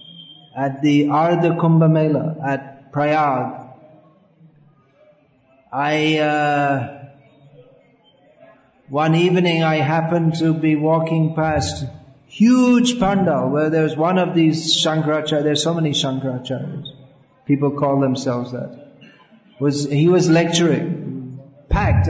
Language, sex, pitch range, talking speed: English, male, 150-180 Hz, 100 wpm